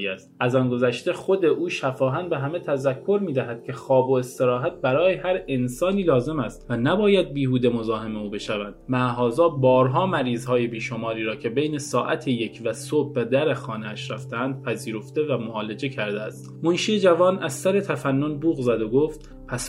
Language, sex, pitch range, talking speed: Persian, male, 125-160 Hz, 175 wpm